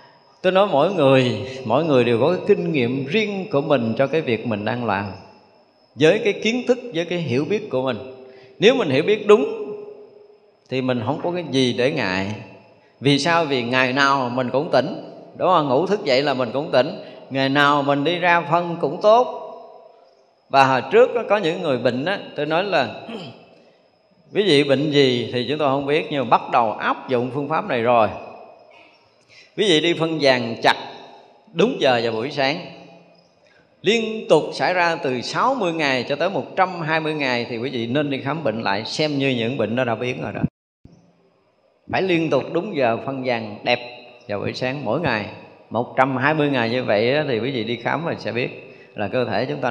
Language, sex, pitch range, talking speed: Vietnamese, male, 125-170 Hz, 200 wpm